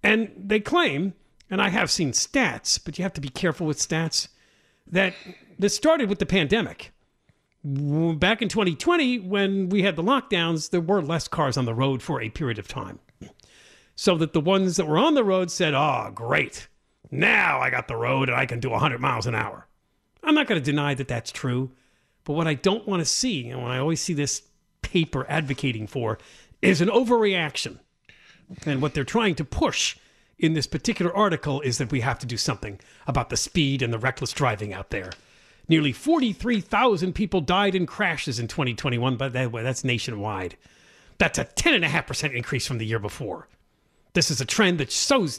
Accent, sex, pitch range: American, male, 135-195 Hz